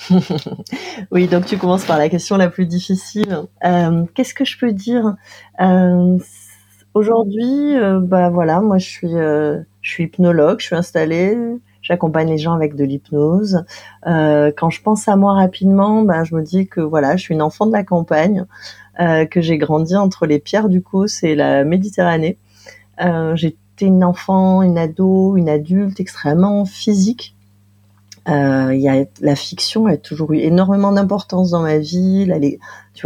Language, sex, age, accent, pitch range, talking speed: French, female, 30-49, French, 145-190 Hz, 165 wpm